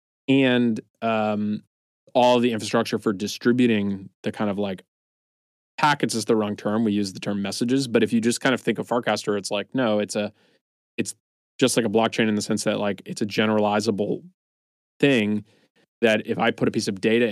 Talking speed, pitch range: 200 wpm, 100-115 Hz